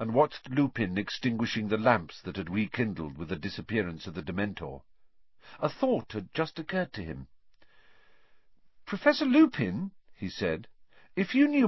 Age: 50-69